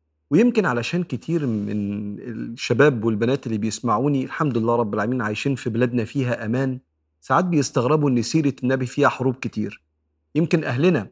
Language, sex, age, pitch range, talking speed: Arabic, male, 40-59, 115-145 Hz, 145 wpm